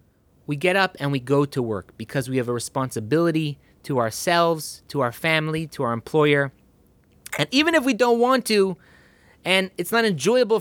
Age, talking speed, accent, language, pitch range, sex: 30-49, 180 wpm, American, English, 150-205 Hz, male